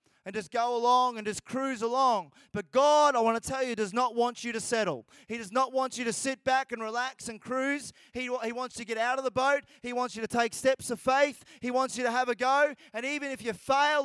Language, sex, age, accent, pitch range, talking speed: English, male, 20-39, Australian, 230-275 Hz, 270 wpm